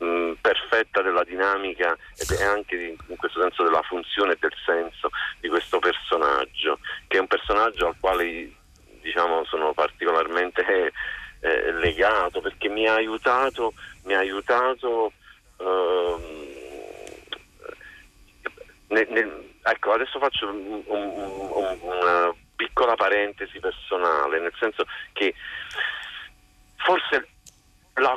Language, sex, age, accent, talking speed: Italian, male, 40-59, native, 100 wpm